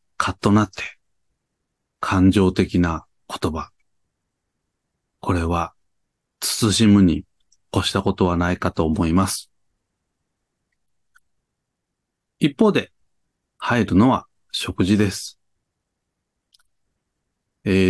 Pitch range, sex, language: 90-115 Hz, male, Japanese